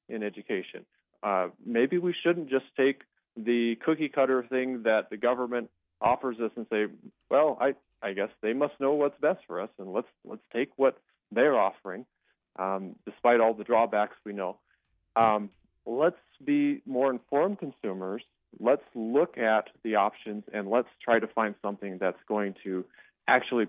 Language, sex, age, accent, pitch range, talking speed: English, male, 40-59, American, 95-130 Hz, 160 wpm